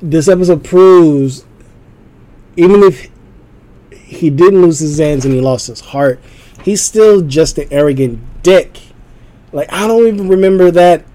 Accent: American